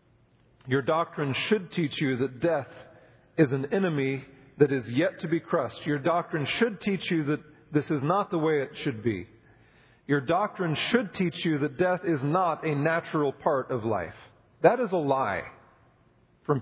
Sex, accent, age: male, American, 40-59